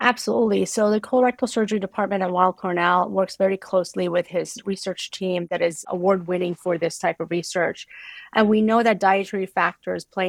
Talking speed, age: 180 wpm, 30-49